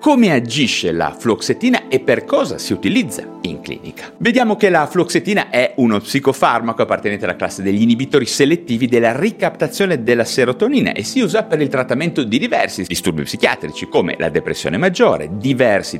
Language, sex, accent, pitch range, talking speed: Italian, male, native, 100-170 Hz, 160 wpm